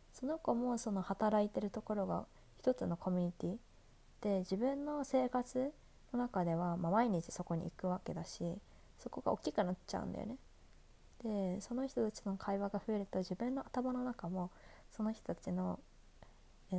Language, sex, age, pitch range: Japanese, female, 20-39, 175-220 Hz